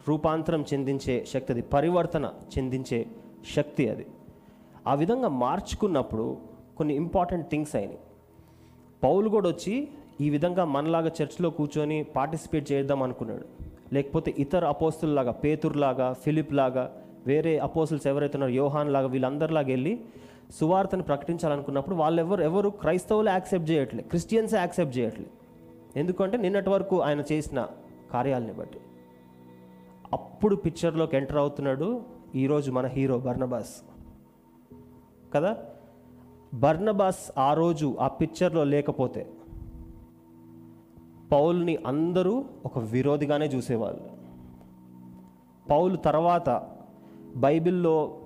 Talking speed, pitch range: 100 wpm, 125-160 Hz